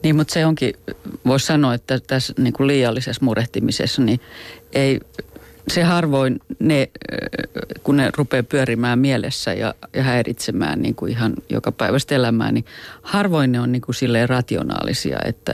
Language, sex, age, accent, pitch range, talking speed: Finnish, female, 40-59, native, 115-140 Hz, 155 wpm